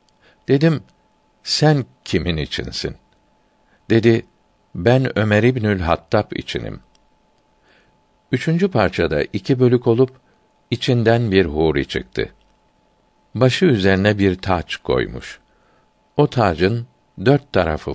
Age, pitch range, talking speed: 60-79, 85-120 Hz, 95 wpm